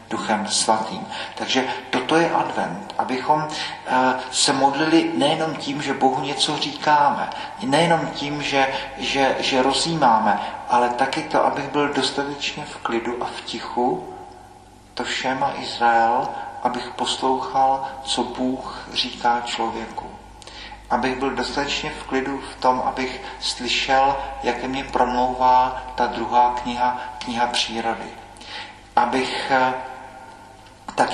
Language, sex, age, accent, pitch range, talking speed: Czech, male, 40-59, native, 120-135 Hz, 120 wpm